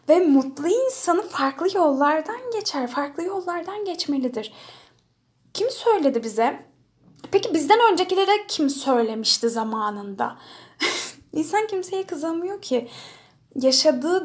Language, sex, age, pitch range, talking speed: Turkish, female, 10-29, 240-345 Hz, 95 wpm